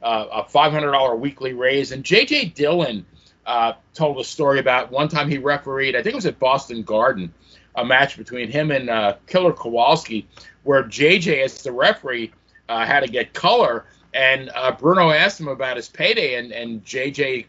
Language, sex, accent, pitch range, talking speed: English, male, American, 120-165 Hz, 180 wpm